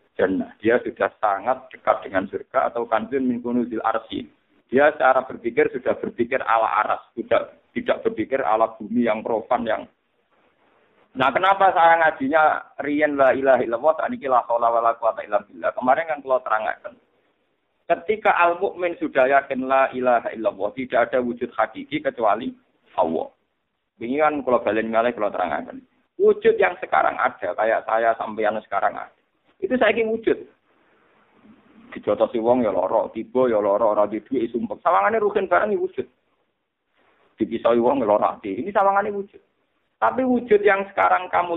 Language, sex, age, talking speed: Malay, male, 50-69, 145 wpm